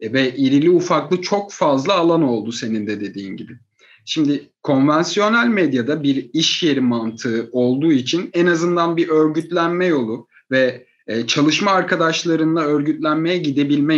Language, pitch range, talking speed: Turkish, 145-190 Hz, 130 wpm